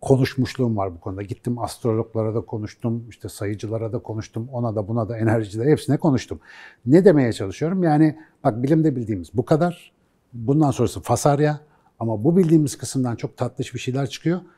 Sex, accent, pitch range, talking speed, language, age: male, native, 110-155 Hz, 165 wpm, Turkish, 60-79